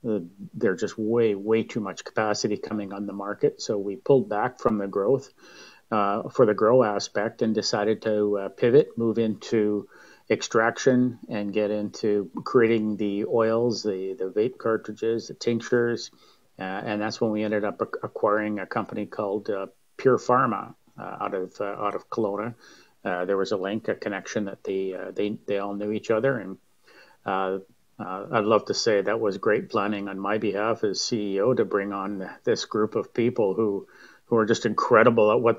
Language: English